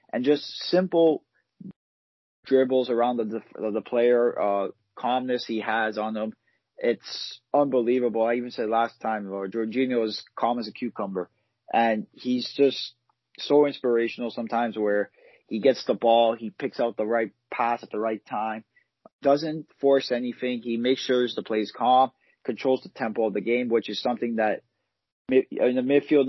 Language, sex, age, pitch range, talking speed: English, male, 30-49, 110-130 Hz, 165 wpm